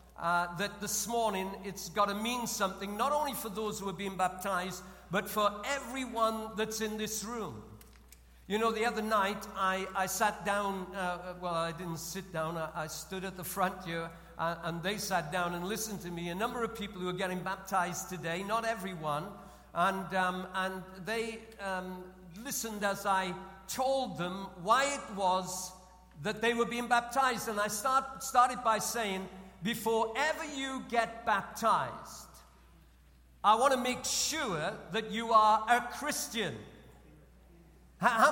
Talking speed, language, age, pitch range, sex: 165 wpm, English, 60-79, 185-230 Hz, male